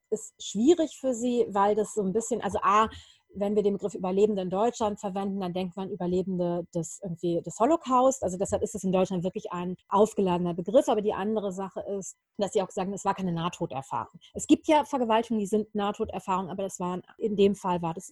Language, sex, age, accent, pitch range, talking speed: German, female, 30-49, German, 190-225 Hz, 210 wpm